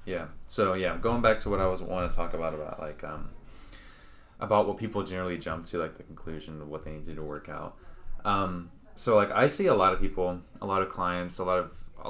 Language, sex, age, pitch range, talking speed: English, male, 20-39, 85-100 Hz, 255 wpm